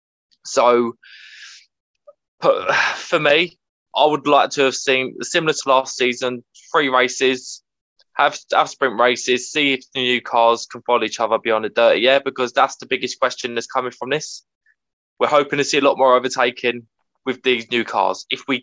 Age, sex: 20-39, male